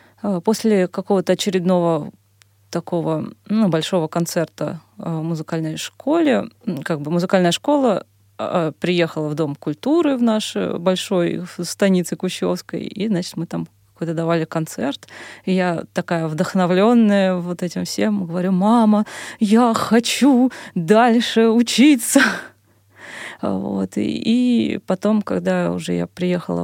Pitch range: 160-195 Hz